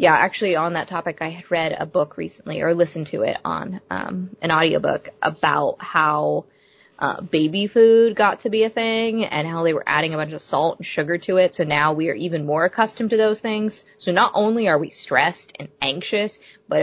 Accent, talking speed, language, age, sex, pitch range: American, 220 wpm, English, 20-39, female, 155-205 Hz